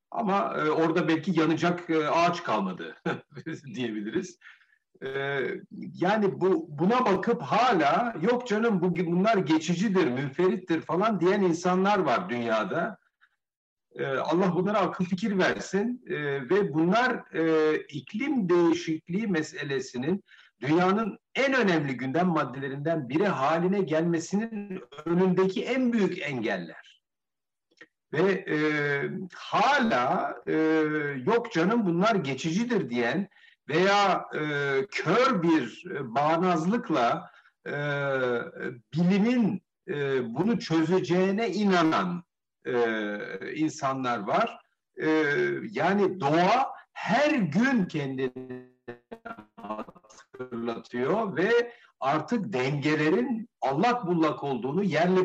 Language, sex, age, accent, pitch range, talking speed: Turkish, male, 60-79, native, 145-195 Hz, 95 wpm